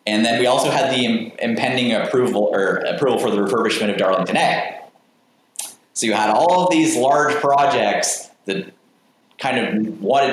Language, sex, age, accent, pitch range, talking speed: English, male, 20-39, American, 105-145 Hz, 165 wpm